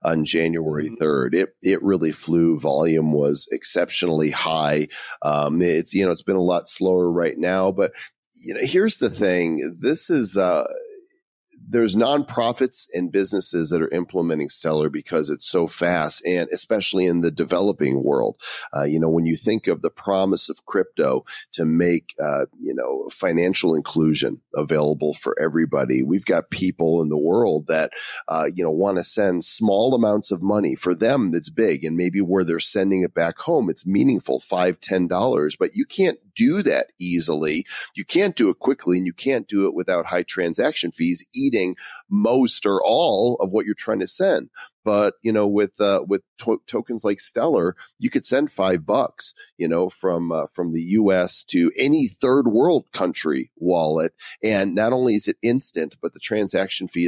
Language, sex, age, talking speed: English, male, 40-59, 180 wpm